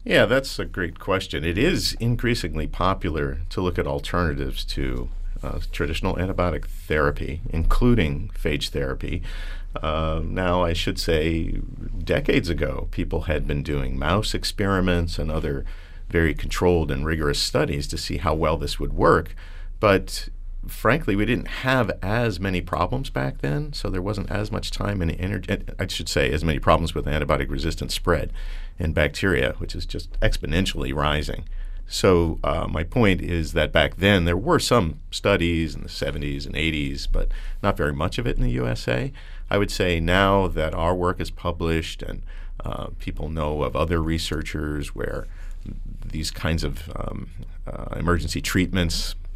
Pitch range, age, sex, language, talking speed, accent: 75-95 Hz, 50-69, male, English, 160 wpm, American